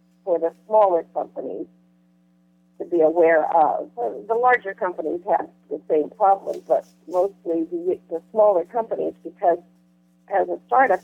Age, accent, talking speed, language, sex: 50-69, American, 135 wpm, English, female